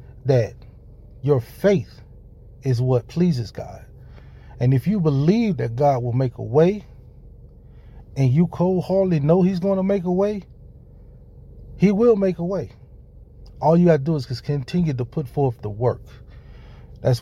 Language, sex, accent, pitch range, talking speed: English, male, American, 120-150 Hz, 165 wpm